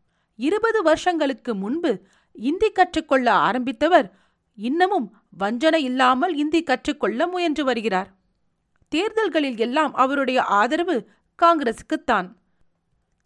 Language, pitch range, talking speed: Tamil, 225-330 Hz, 75 wpm